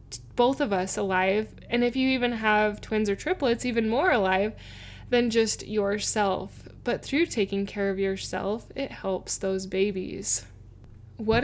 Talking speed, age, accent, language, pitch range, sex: 150 wpm, 10-29, American, English, 195-235 Hz, female